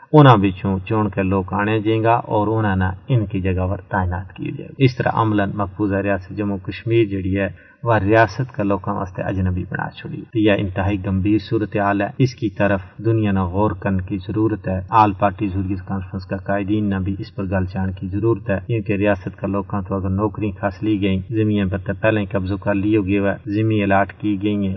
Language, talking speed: Urdu, 170 wpm